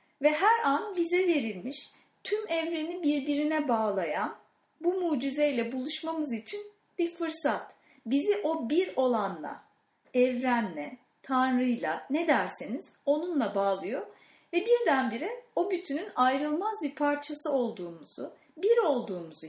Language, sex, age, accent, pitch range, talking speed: English, female, 40-59, Turkish, 240-320 Hz, 110 wpm